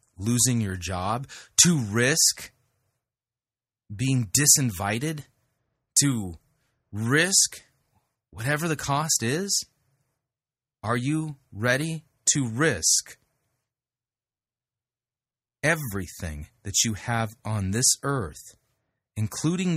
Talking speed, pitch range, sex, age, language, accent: 80 wpm, 110-135 Hz, male, 30-49, English, American